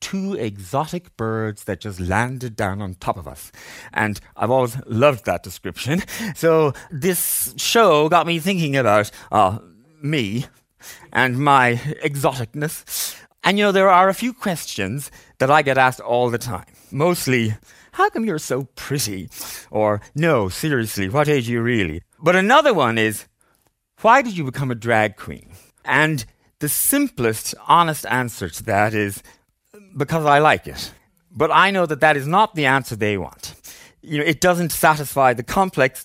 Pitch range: 110-155 Hz